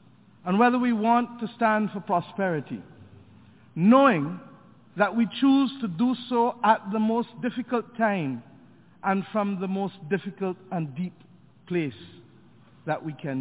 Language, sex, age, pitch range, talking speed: English, male, 50-69, 160-230 Hz, 140 wpm